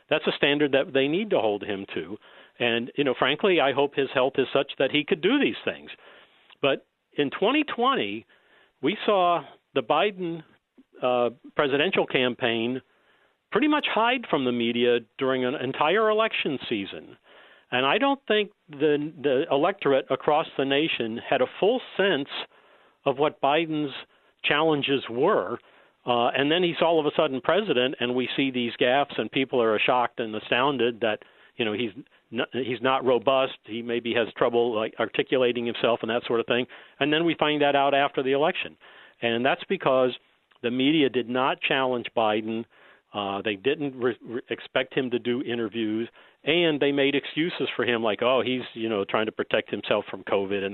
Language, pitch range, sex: English, 120-150 Hz, male